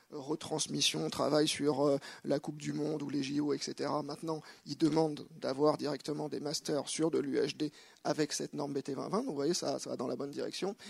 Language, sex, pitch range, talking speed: French, male, 150-165 Hz, 200 wpm